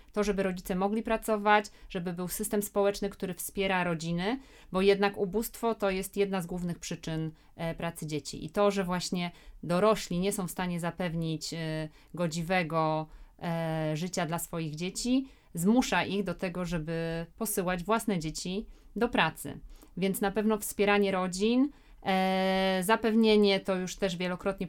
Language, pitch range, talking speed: Polish, 175-210 Hz, 145 wpm